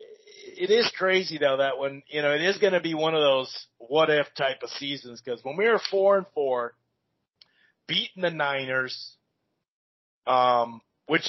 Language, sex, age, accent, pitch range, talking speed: English, male, 40-59, American, 135-185 Hz, 175 wpm